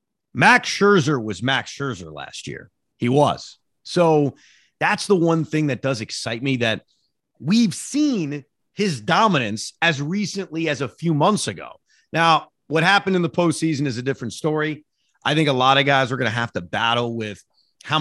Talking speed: 180 wpm